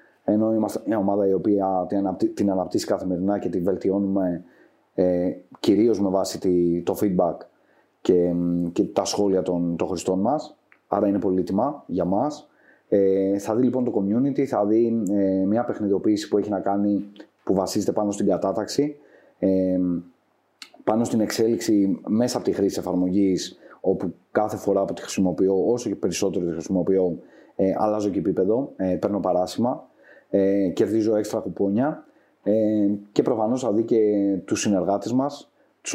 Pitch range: 95-105 Hz